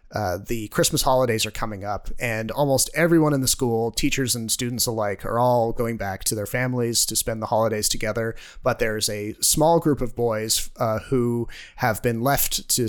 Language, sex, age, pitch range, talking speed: English, male, 30-49, 110-130 Hz, 195 wpm